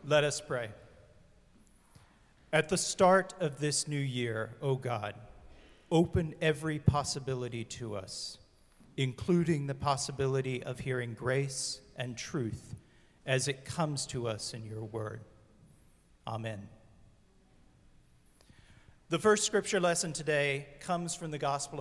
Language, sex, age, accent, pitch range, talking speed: English, male, 40-59, American, 125-160 Hz, 120 wpm